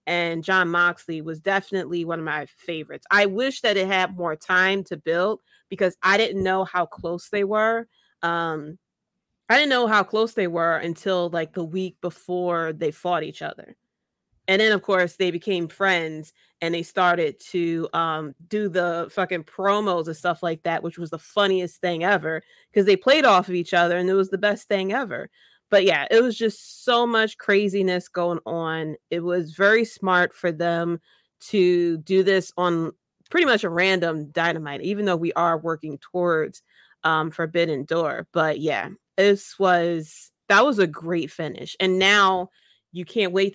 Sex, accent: female, American